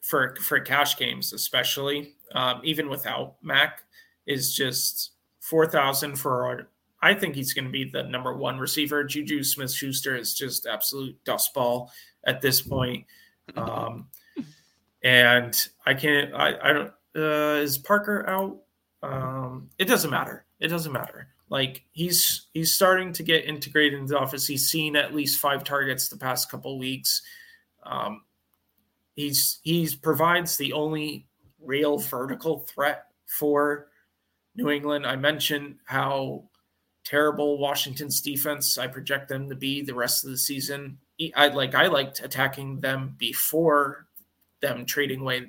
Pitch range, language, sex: 130-150 Hz, English, male